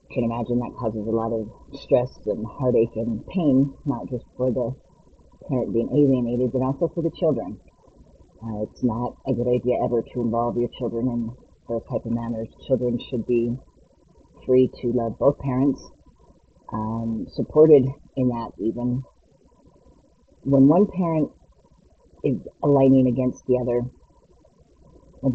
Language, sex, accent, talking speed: English, female, American, 145 wpm